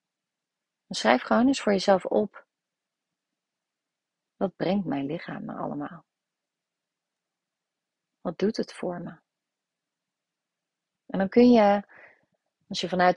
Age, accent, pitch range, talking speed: 30-49, Dutch, 170-220 Hz, 110 wpm